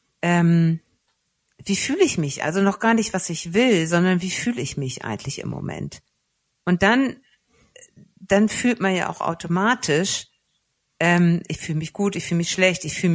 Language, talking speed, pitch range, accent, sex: German, 180 wpm, 155-195 Hz, German, female